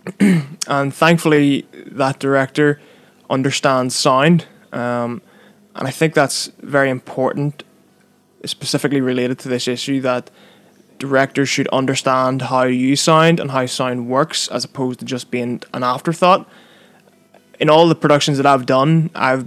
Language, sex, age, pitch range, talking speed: English, male, 20-39, 125-155 Hz, 135 wpm